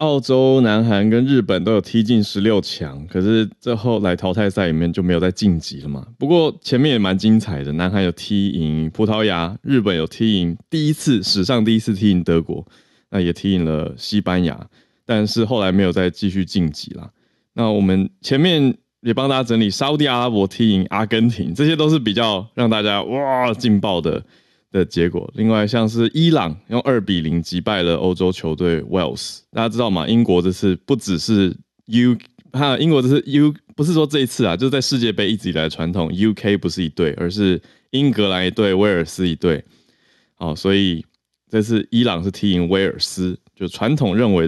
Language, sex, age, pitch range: Chinese, male, 20-39, 90-125 Hz